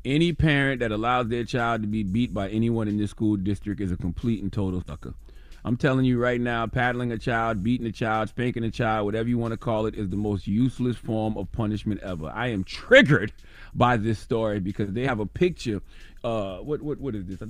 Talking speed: 230 wpm